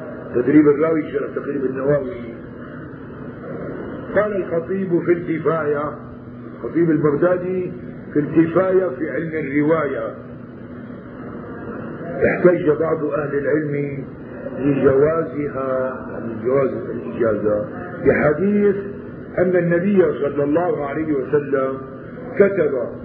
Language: Arabic